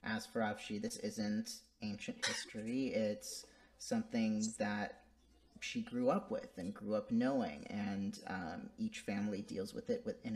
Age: 30-49